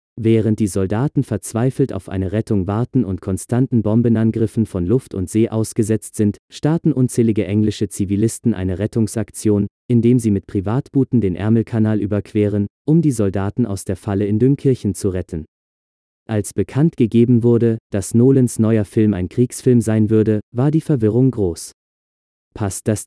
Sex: male